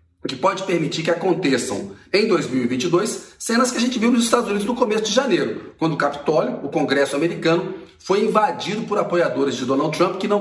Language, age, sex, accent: Portuguese, 40-59, male, Brazilian